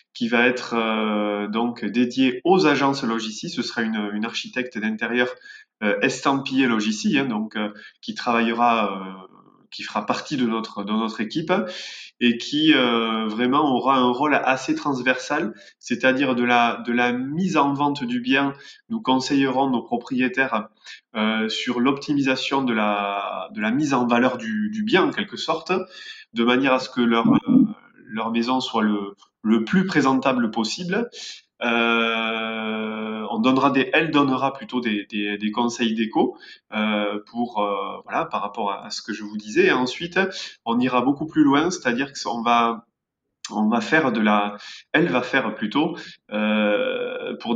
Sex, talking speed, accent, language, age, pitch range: male, 170 wpm, French, French, 20-39, 110-140 Hz